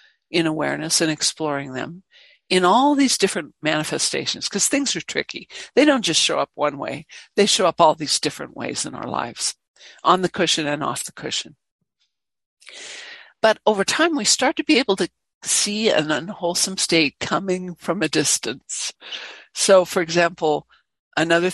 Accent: American